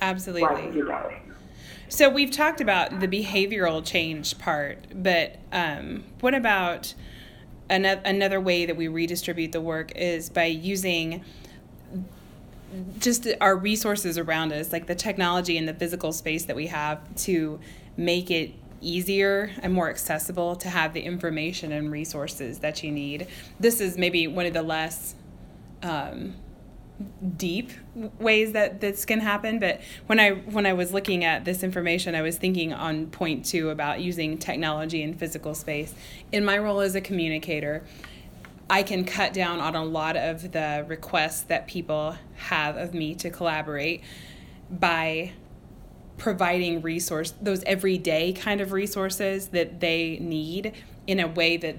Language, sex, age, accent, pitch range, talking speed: English, female, 20-39, American, 160-195 Hz, 150 wpm